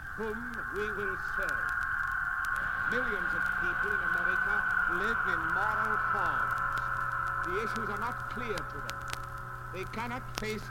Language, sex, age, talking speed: English, male, 60-79, 130 wpm